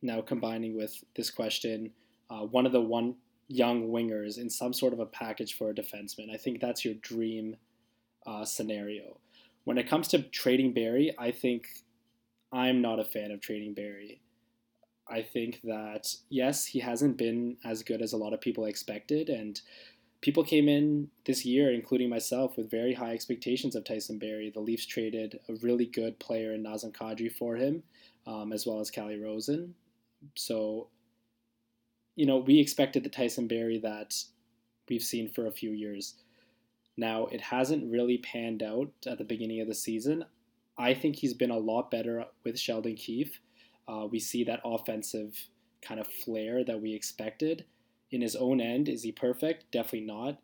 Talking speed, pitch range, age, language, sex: 175 wpm, 110-125 Hz, 20-39, English, male